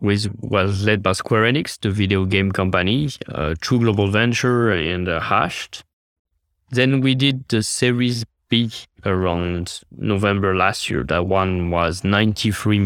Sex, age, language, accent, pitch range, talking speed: male, 20-39, English, French, 85-115 Hz, 145 wpm